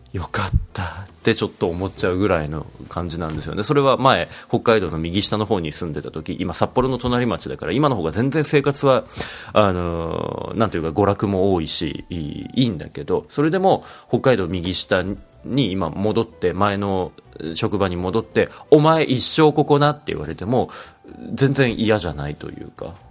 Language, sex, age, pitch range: Japanese, male, 30-49, 90-140 Hz